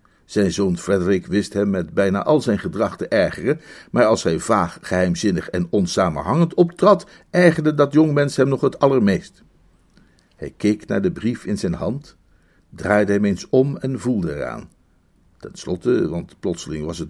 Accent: Dutch